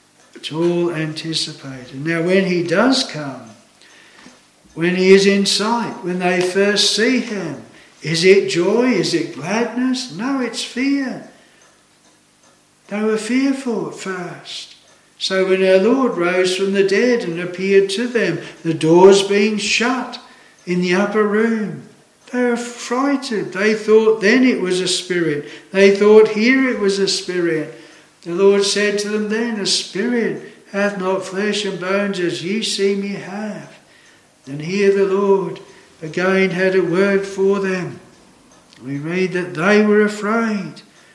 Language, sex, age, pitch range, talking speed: English, male, 60-79, 170-210 Hz, 150 wpm